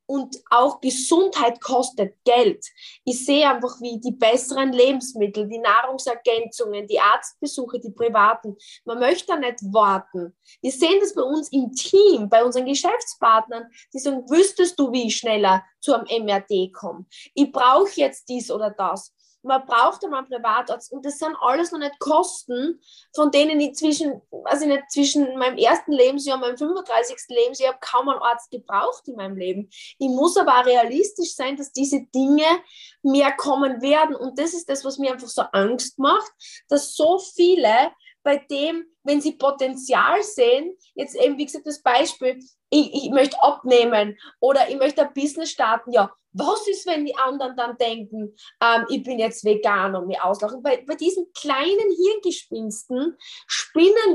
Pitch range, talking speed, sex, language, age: 235-315 Hz, 165 wpm, female, German, 20-39